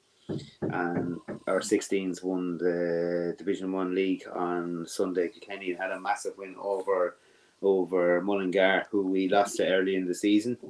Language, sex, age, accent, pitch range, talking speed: English, male, 30-49, Irish, 85-95 Hz, 145 wpm